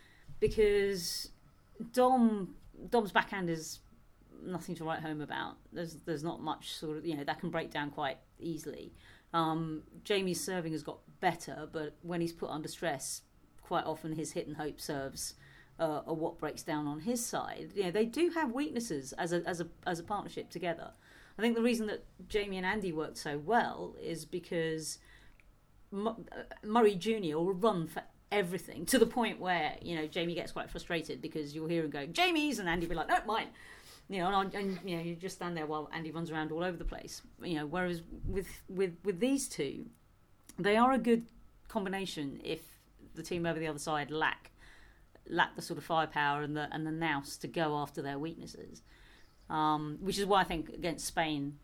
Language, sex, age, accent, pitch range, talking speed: English, female, 40-59, British, 155-190 Hz, 195 wpm